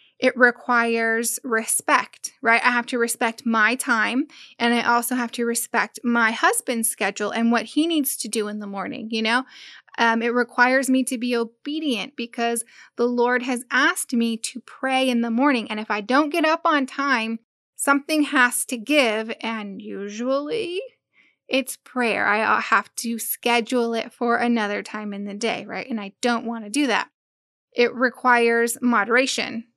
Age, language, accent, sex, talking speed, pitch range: 10-29, English, American, female, 175 wpm, 230-260 Hz